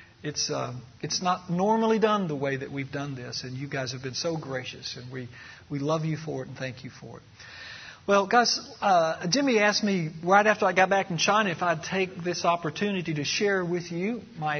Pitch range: 150-200 Hz